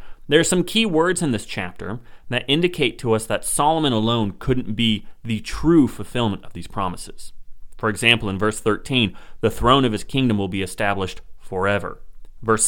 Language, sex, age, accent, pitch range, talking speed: English, male, 30-49, American, 95-125 Hz, 180 wpm